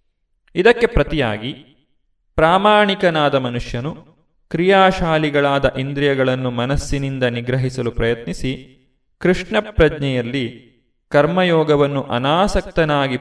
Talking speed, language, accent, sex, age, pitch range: 60 wpm, Kannada, native, male, 20-39, 125-180 Hz